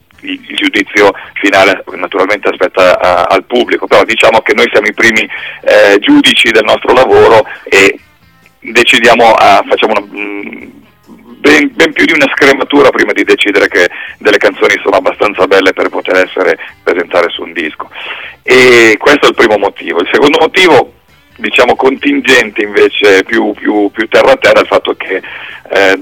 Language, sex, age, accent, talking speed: Italian, male, 40-59, native, 150 wpm